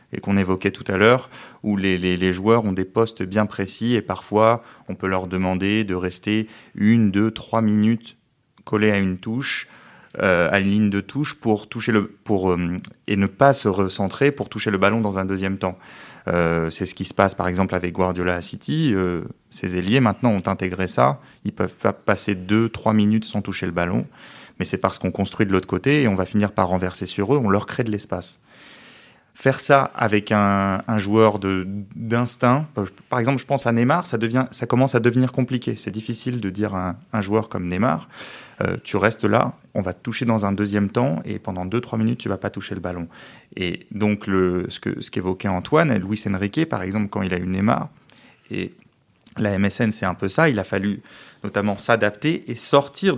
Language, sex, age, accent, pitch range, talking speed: French, male, 30-49, French, 95-115 Hz, 220 wpm